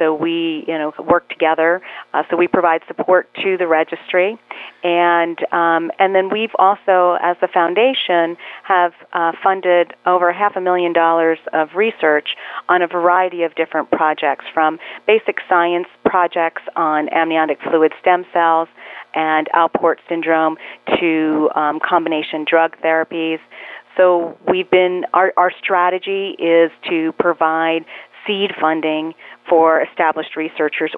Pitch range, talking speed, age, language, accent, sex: 155-180 Hz, 135 wpm, 40-59, English, American, female